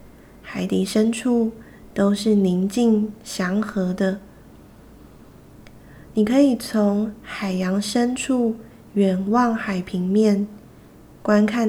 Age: 20-39